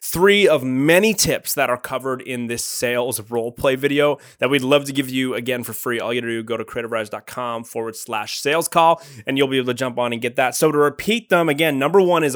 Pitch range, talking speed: 125-155 Hz, 250 wpm